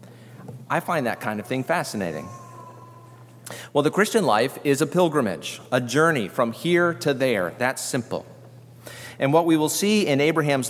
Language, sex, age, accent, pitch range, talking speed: English, male, 40-59, American, 115-155 Hz, 165 wpm